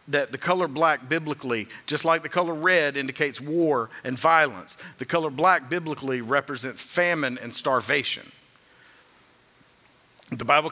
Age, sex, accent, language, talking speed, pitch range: 50-69, male, American, English, 135 wpm, 150-195 Hz